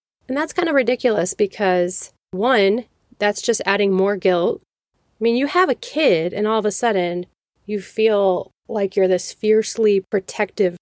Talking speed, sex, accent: 165 wpm, female, American